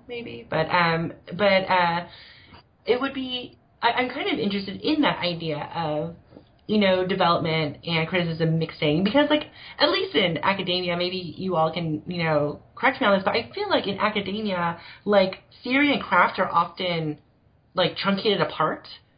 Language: English